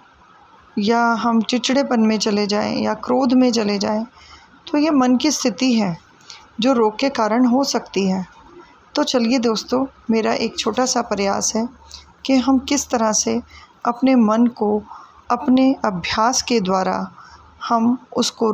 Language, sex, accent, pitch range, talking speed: Hindi, female, native, 210-250 Hz, 150 wpm